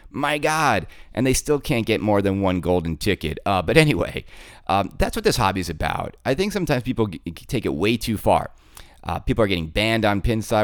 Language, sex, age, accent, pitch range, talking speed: English, male, 30-49, American, 90-120 Hz, 215 wpm